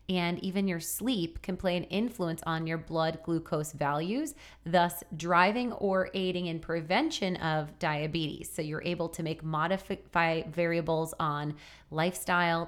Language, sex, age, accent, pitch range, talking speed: English, female, 30-49, American, 155-185 Hz, 140 wpm